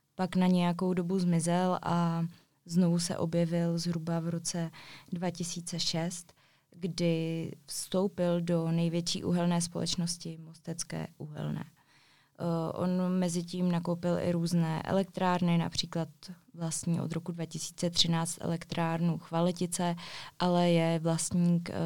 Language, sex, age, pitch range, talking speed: Czech, female, 20-39, 165-175 Hz, 100 wpm